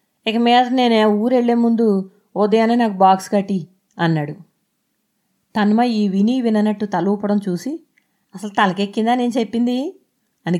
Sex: female